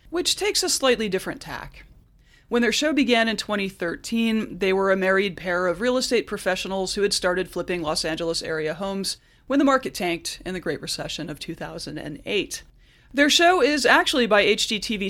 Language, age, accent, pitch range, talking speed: English, 30-49, American, 180-235 Hz, 180 wpm